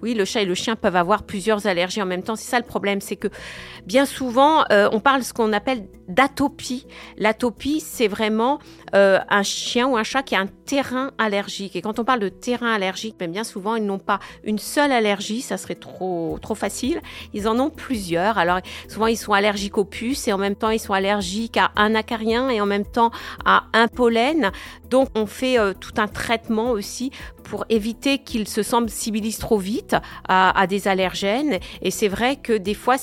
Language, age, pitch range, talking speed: French, 50-69, 205-245 Hz, 215 wpm